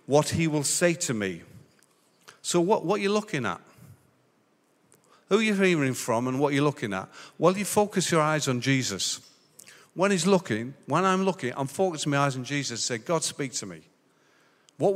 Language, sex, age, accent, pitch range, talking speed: English, male, 50-69, British, 125-175 Hz, 200 wpm